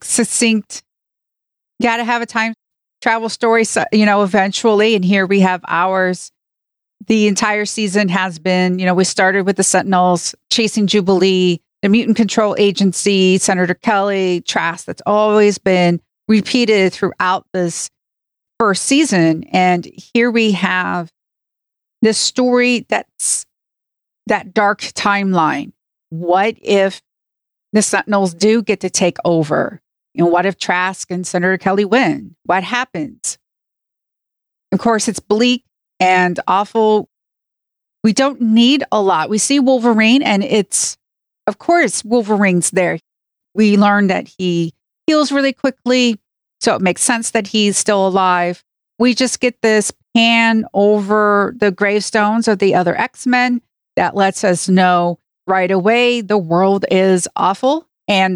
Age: 40-59